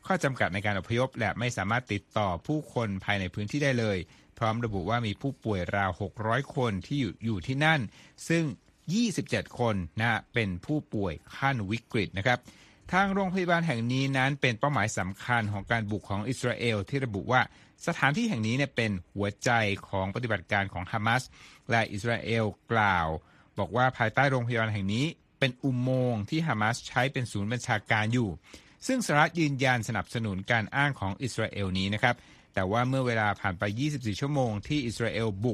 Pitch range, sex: 100-130 Hz, male